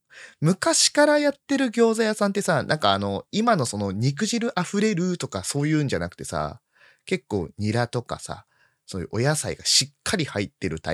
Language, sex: Japanese, male